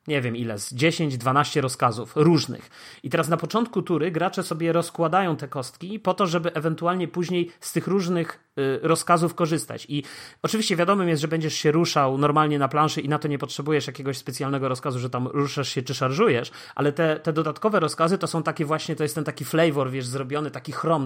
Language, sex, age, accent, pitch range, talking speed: Polish, male, 30-49, native, 135-160 Hz, 200 wpm